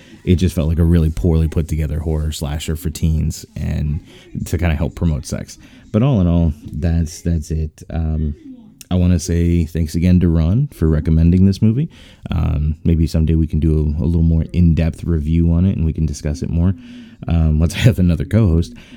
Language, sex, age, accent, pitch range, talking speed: English, male, 20-39, American, 80-100 Hz, 215 wpm